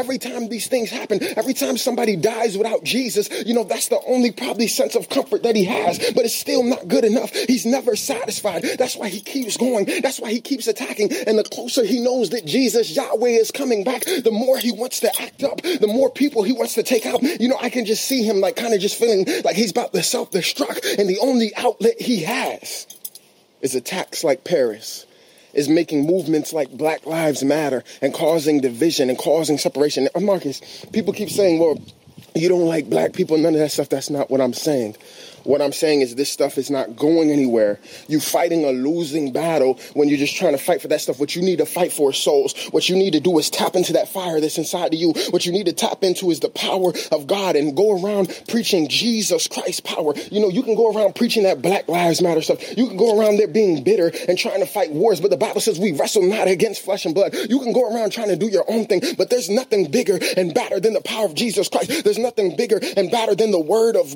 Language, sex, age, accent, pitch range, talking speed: English, male, 30-49, American, 165-245 Hz, 240 wpm